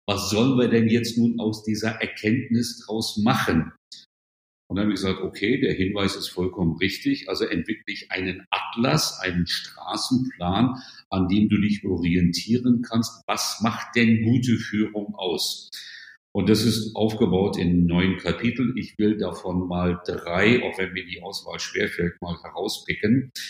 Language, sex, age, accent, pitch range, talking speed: German, male, 50-69, German, 95-110 Hz, 155 wpm